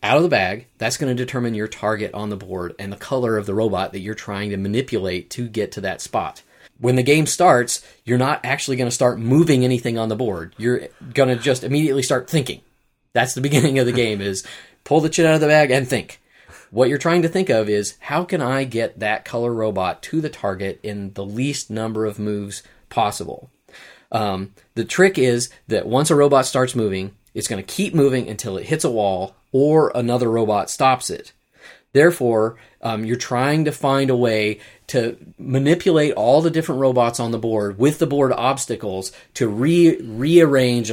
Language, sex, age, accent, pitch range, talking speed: English, male, 30-49, American, 110-135 Hz, 205 wpm